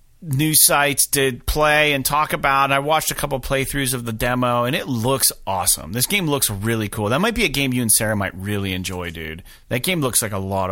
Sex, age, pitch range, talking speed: male, 30-49, 110-150 Hz, 245 wpm